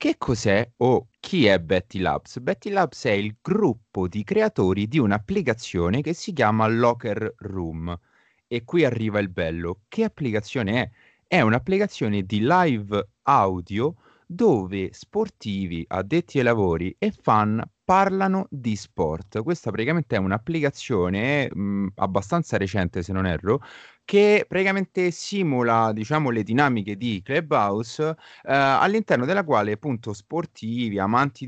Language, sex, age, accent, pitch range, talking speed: Italian, male, 30-49, native, 100-150 Hz, 130 wpm